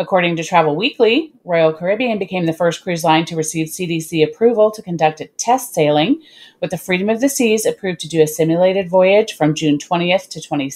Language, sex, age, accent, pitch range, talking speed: English, female, 30-49, American, 155-200 Hz, 200 wpm